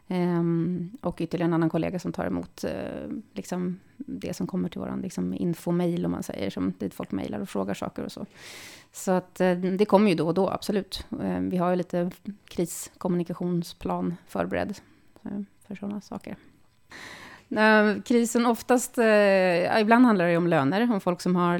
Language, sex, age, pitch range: Swedish, female, 30-49, 175-205 Hz